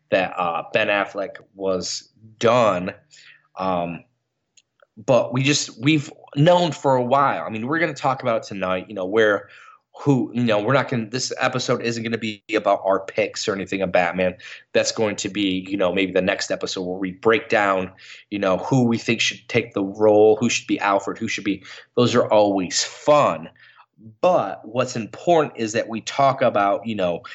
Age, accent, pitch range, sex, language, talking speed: 20-39, American, 100-130 Hz, male, English, 195 wpm